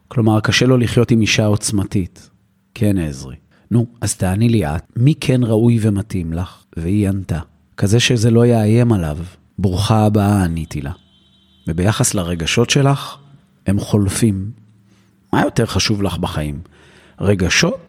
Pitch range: 90-115 Hz